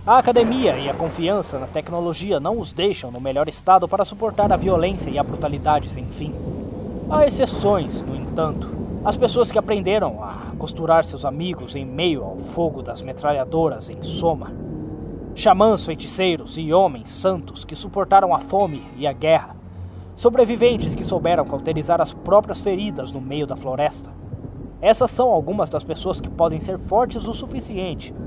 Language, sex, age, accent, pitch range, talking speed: Portuguese, male, 20-39, Brazilian, 140-200 Hz, 160 wpm